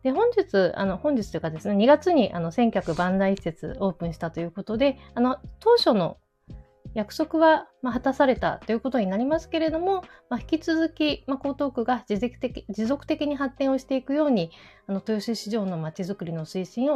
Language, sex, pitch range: Japanese, female, 195-285 Hz